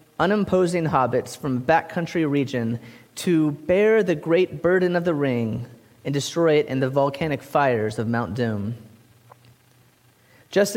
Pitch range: 125-180 Hz